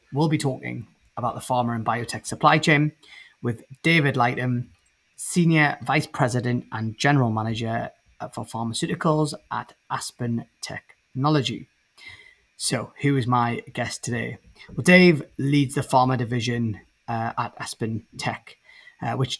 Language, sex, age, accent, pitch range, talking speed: English, male, 30-49, British, 115-140 Hz, 130 wpm